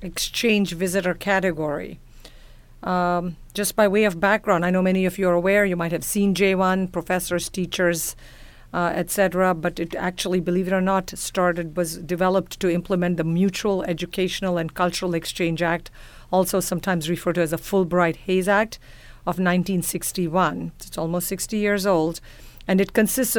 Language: English